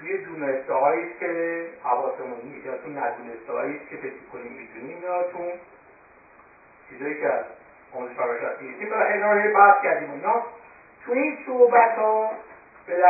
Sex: male